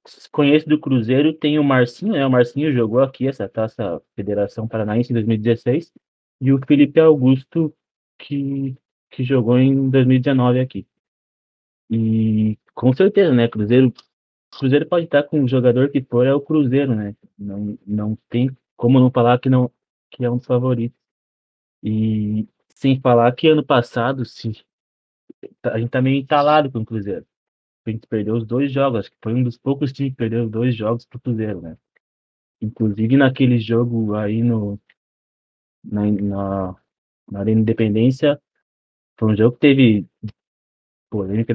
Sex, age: male, 20-39